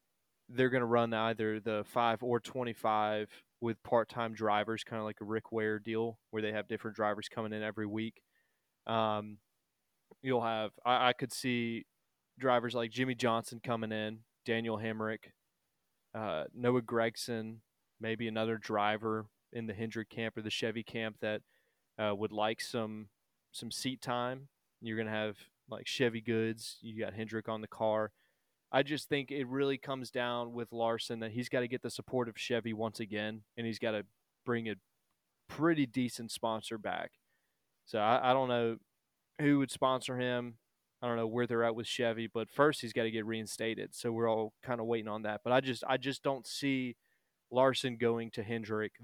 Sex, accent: male, American